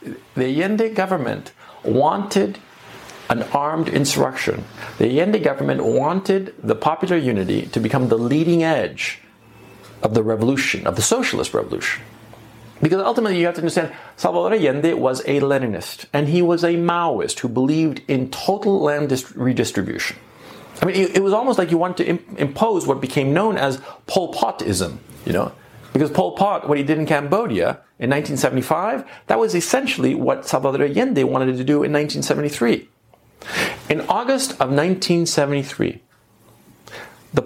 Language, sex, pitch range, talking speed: English, male, 130-175 Hz, 145 wpm